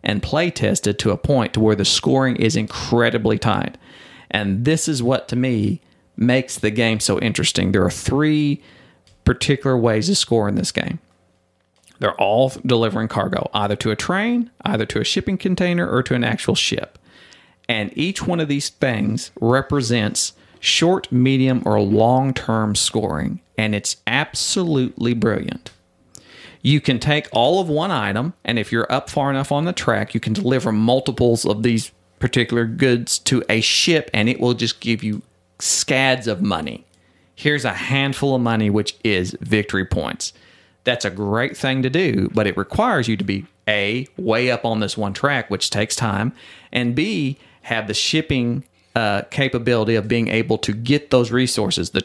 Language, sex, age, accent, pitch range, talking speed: English, male, 40-59, American, 105-135 Hz, 175 wpm